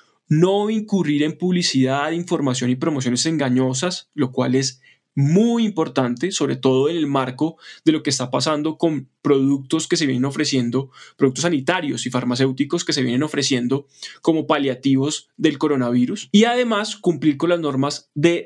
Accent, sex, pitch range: Colombian, male, 135-175 Hz